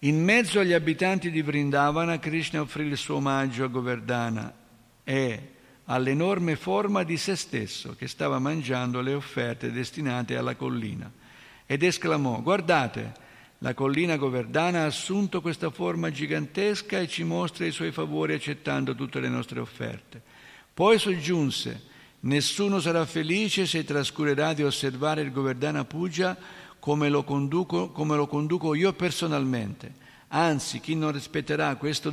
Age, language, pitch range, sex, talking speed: 60-79, Italian, 130-165 Hz, male, 140 wpm